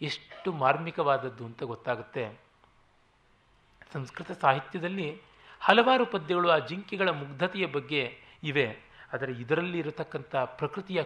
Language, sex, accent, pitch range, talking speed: Kannada, male, native, 130-180 Hz, 90 wpm